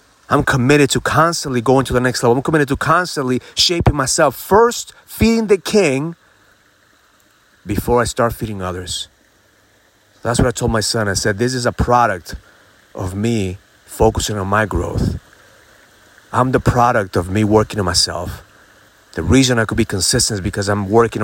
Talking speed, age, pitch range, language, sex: 170 wpm, 30-49, 100-125 Hz, English, male